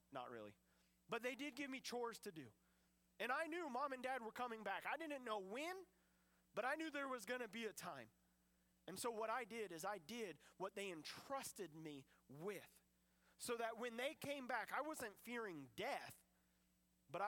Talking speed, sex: 195 wpm, male